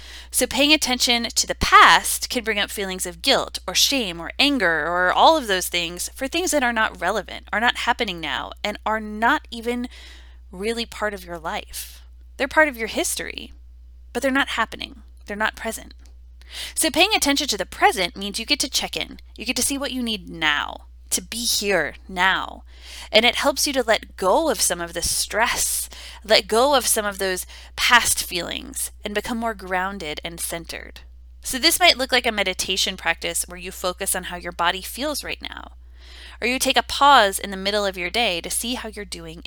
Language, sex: English, female